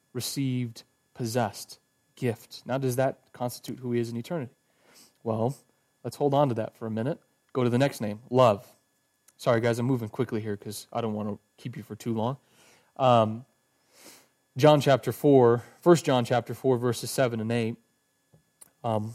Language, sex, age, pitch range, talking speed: English, male, 30-49, 120-140 Hz, 175 wpm